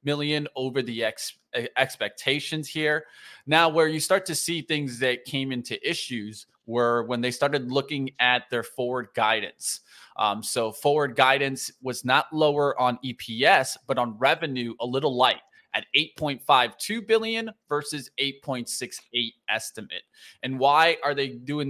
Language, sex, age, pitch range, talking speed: English, male, 20-39, 120-150 Hz, 145 wpm